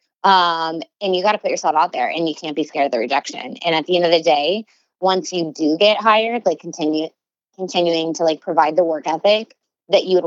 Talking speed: 240 wpm